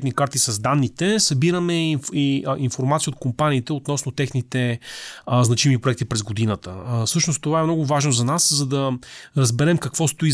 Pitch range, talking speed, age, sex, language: 125-145 Hz, 145 wpm, 30-49, male, Bulgarian